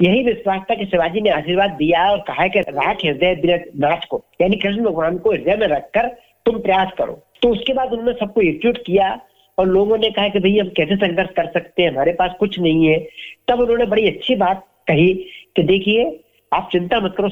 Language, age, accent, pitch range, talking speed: Hindi, 50-69, native, 170-215 Hz, 155 wpm